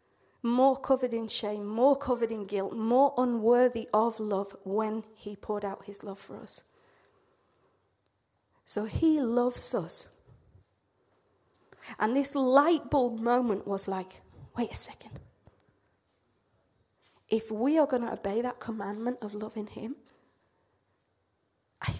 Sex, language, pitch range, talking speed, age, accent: female, Danish, 210-255 Hz, 125 wpm, 30-49, British